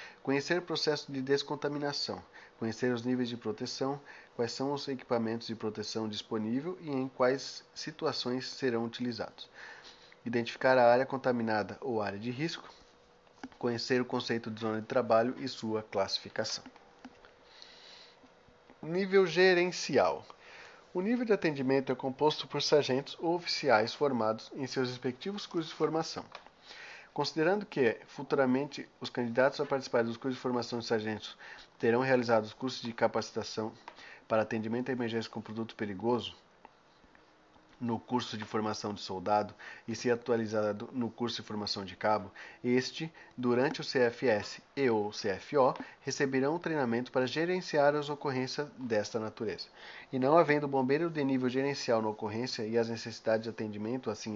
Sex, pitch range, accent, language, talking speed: male, 115-140 Hz, Brazilian, Portuguese, 145 wpm